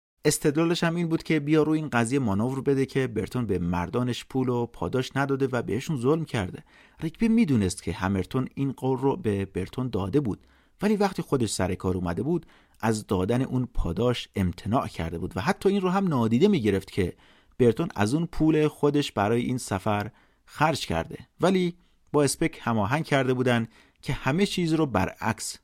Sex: male